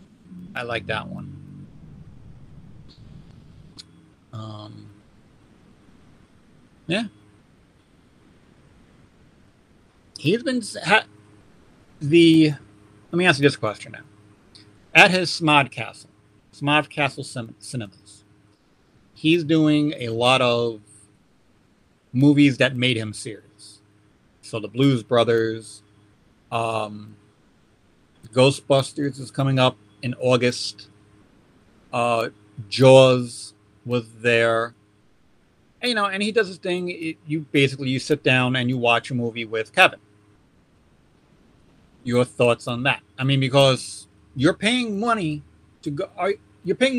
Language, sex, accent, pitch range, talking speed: English, male, American, 105-145 Hz, 105 wpm